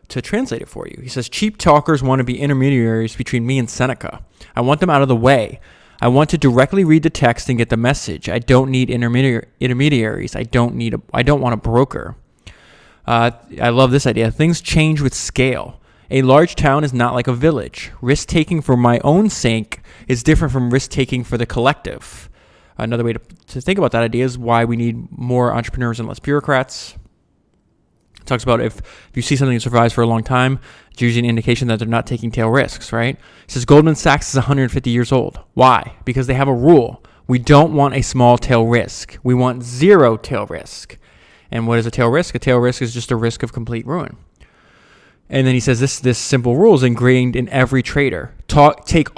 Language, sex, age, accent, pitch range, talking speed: English, male, 20-39, American, 120-140 Hz, 215 wpm